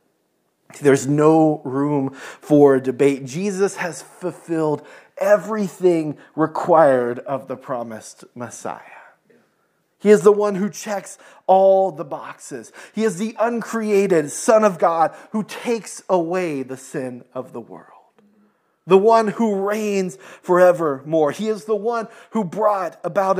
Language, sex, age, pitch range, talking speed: English, male, 30-49, 140-195 Hz, 130 wpm